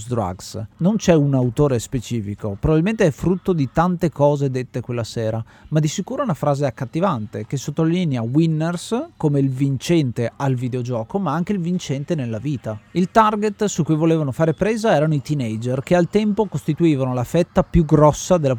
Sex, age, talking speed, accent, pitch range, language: male, 30-49, 180 wpm, native, 125-170 Hz, Italian